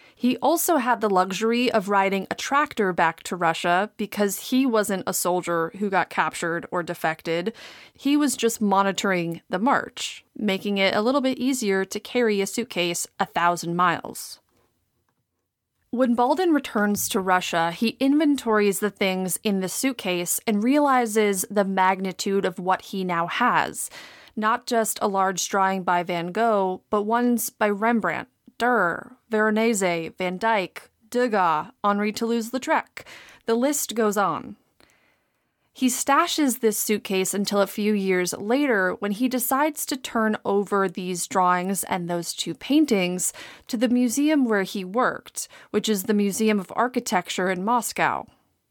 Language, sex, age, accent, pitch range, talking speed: English, female, 30-49, American, 185-240 Hz, 145 wpm